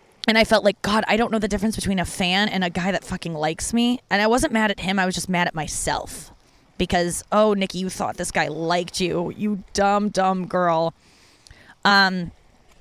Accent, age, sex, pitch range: American, 20-39, female, 180-230 Hz